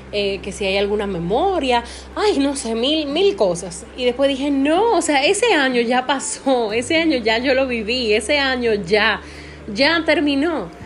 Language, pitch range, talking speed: Spanish, 205-260 Hz, 180 wpm